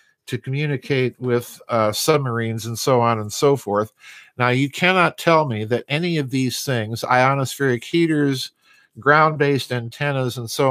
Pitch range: 120-145 Hz